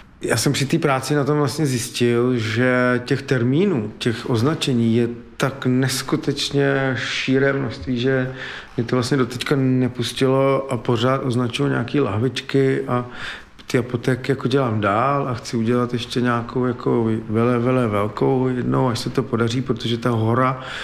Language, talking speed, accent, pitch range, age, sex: Czech, 155 wpm, native, 120-135 Hz, 40-59, male